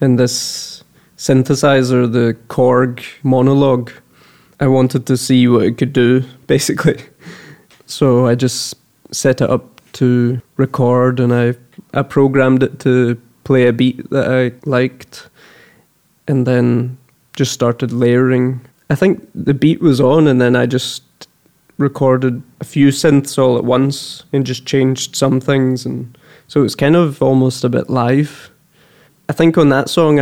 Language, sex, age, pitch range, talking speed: English, male, 20-39, 125-140 Hz, 155 wpm